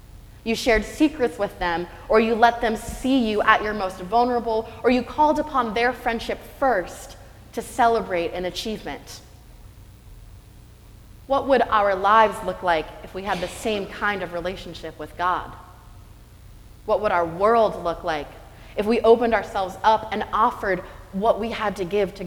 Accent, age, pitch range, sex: American, 20-39, 170-235 Hz, female